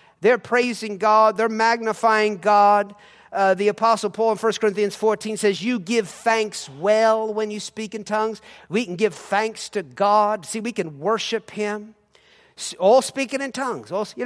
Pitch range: 200-235 Hz